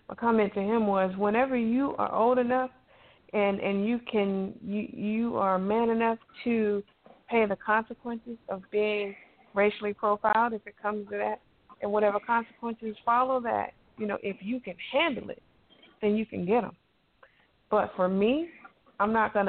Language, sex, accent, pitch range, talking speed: English, female, American, 190-230 Hz, 170 wpm